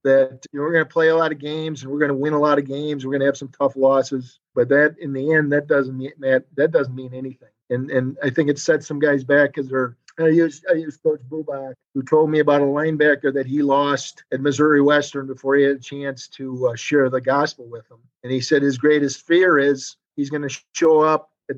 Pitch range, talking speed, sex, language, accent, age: 130-150 Hz, 260 wpm, male, English, American, 50-69